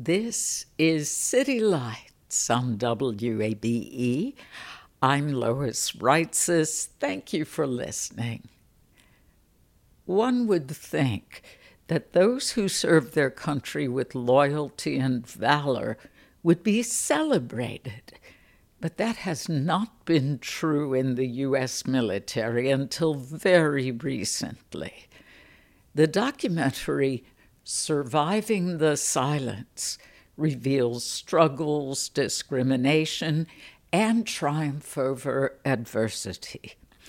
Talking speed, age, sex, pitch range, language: 85 wpm, 60-79, female, 130-165 Hz, English